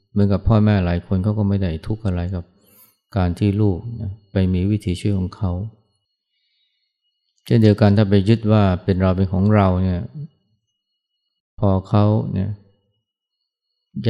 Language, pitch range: Thai, 95-105 Hz